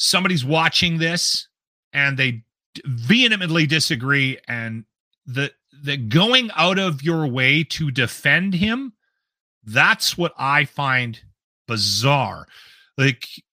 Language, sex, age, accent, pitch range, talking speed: English, male, 40-59, American, 130-175 Hz, 110 wpm